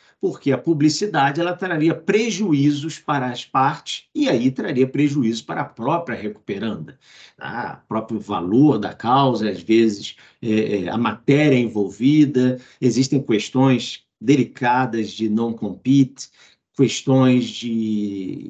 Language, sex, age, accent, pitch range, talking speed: Portuguese, male, 50-69, Brazilian, 115-150 Hz, 105 wpm